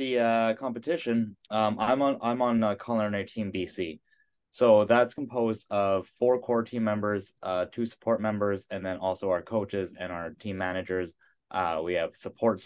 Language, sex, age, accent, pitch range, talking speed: English, male, 20-39, American, 90-110 Hz, 170 wpm